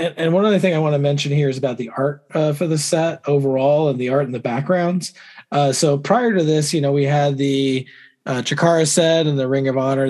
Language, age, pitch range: English, 20-39, 130-150 Hz